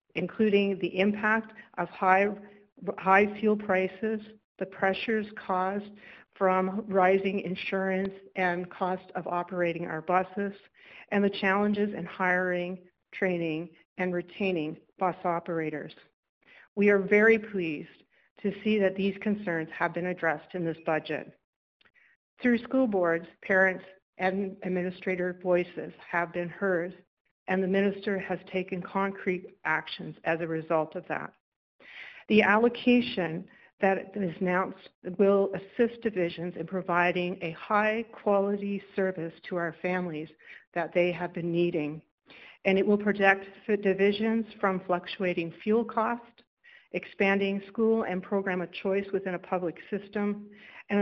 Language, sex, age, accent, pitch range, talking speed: English, female, 60-79, American, 175-205 Hz, 125 wpm